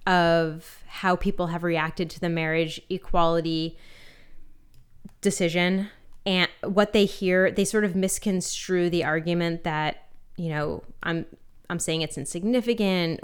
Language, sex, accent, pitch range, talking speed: English, female, American, 160-190 Hz, 125 wpm